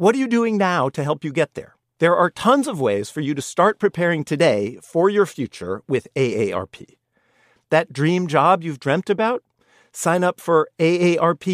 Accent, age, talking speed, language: American, 50-69, 185 wpm, English